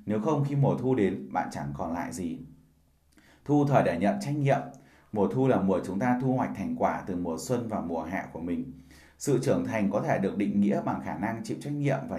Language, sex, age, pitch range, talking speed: Vietnamese, male, 20-39, 95-135 Hz, 245 wpm